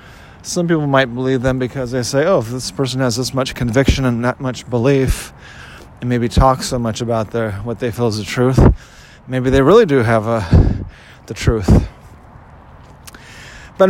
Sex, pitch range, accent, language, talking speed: male, 115-135 Hz, American, English, 180 wpm